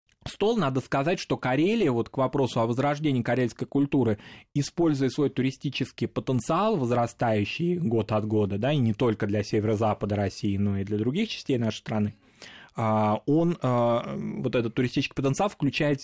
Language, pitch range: Russian, 110-140 Hz